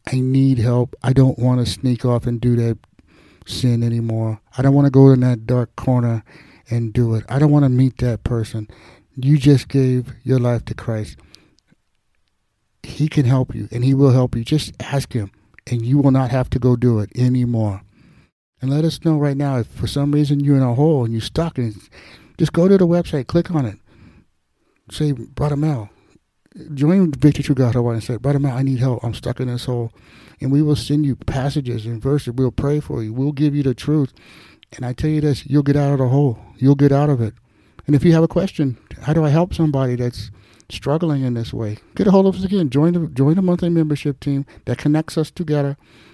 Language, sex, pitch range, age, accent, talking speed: English, male, 115-145 Hz, 60-79, American, 225 wpm